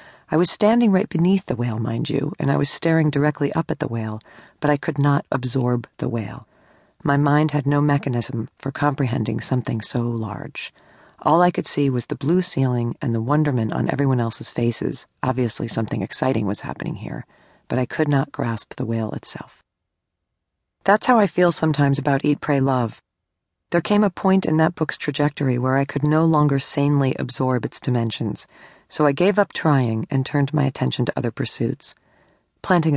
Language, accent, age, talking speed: English, American, 40-59, 185 wpm